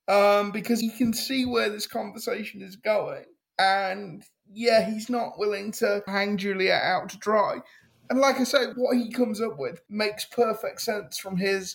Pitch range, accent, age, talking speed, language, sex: 195-235 Hz, British, 20-39, 180 wpm, English, male